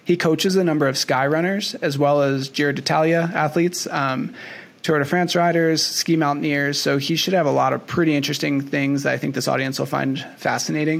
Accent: American